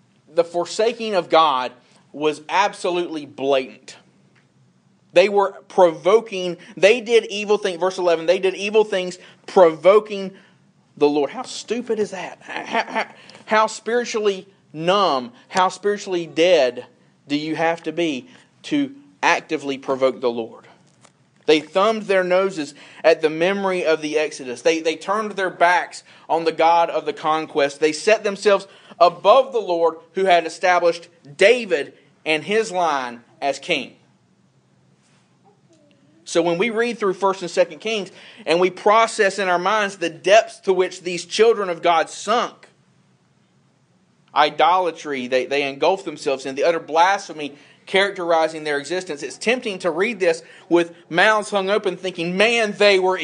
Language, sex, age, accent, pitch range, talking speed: English, male, 40-59, American, 155-200 Hz, 145 wpm